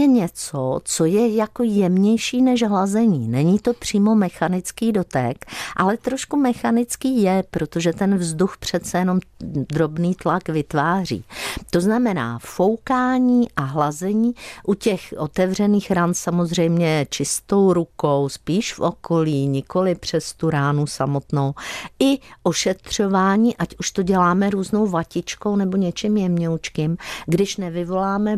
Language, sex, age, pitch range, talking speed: Czech, female, 50-69, 150-205 Hz, 120 wpm